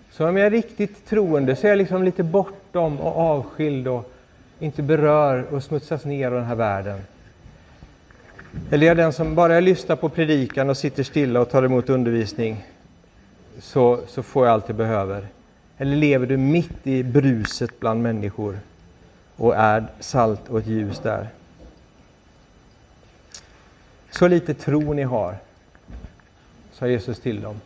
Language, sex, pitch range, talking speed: Swedish, male, 105-140 Hz, 155 wpm